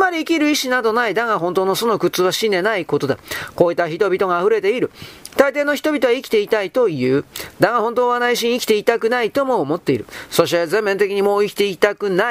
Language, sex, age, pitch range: Japanese, male, 40-59, 200-275 Hz